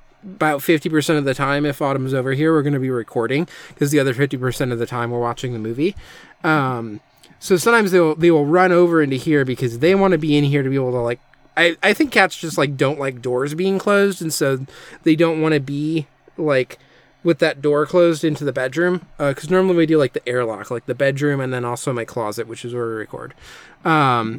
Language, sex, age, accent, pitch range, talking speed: English, male, 20-39, American, 130-165 Hz, 235 wpm